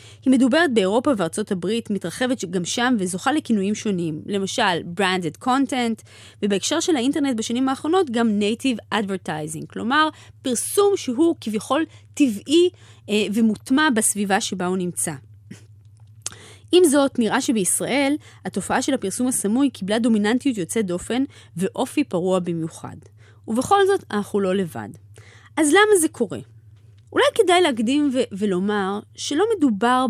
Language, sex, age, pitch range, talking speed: Hebrew, female, 20-39, 185-280 Hz, 130 wpm